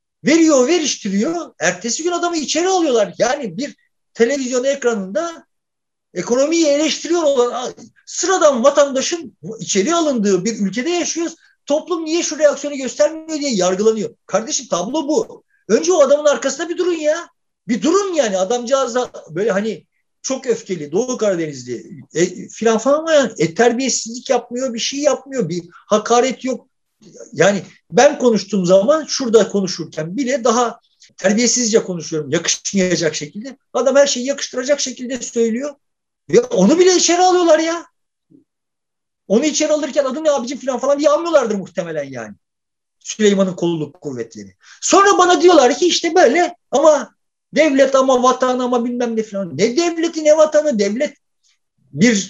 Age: 50-69